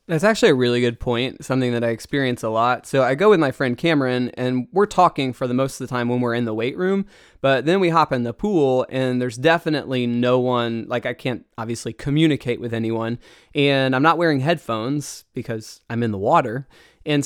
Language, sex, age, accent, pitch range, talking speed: English, male, 20-39, American, 120-155 Hz, 225 wpm